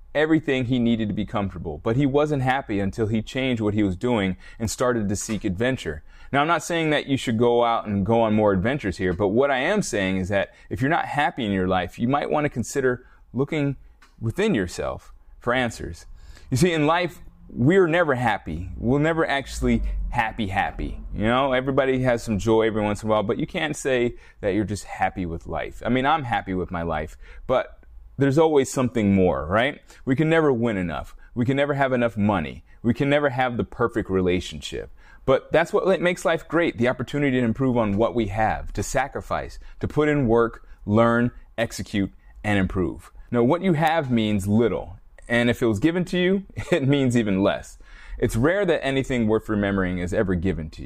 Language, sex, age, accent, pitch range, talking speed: English, male, 30-49, American, 95-135 Hz, 210 wpm